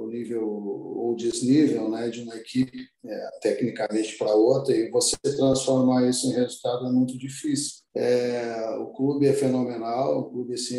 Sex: male